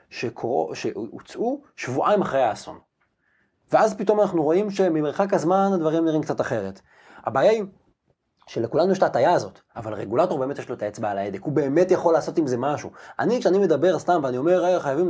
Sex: male